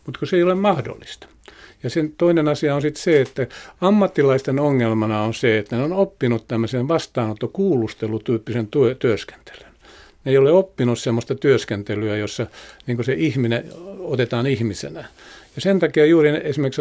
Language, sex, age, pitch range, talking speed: Finnish, male, 50-69, 120-150 Hz, 155 wpm